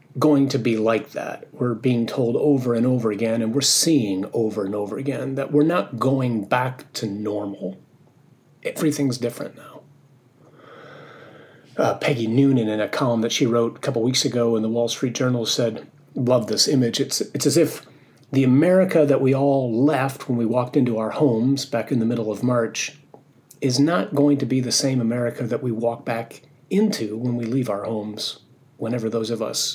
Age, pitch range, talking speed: 40-59, 115-145 Hz, 190 wpm